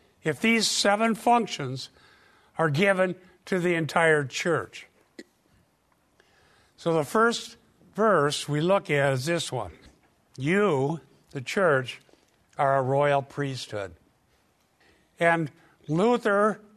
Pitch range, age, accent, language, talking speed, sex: 150-195 Hz, 60-79, American, English, 105 wpm, male